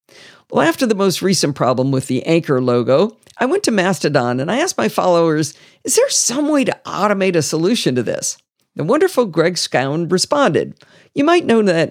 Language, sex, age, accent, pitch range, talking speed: English, female, 50-69, American, 140-225 Hz, 190 wpm